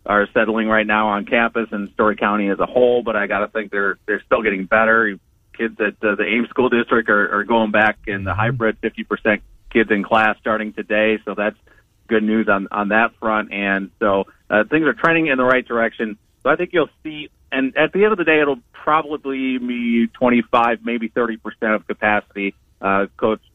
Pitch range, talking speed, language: 100-120 Hz, 210 wpm, English